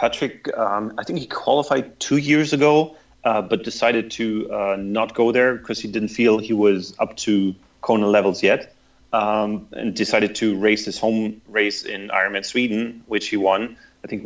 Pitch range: 100-115 Hz